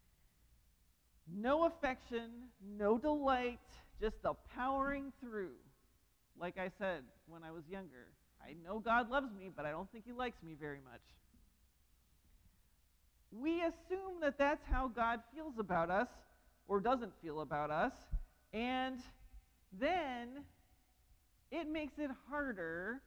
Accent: American